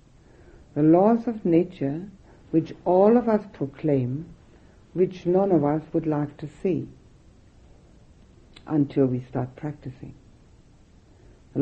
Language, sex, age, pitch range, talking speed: English, female, 60-79, 130-170 Hz, 115 wpm